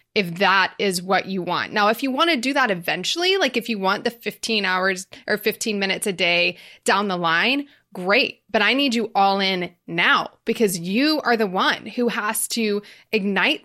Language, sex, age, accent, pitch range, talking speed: English, female, 20-39, American, 195-240 Hz, 200 wpm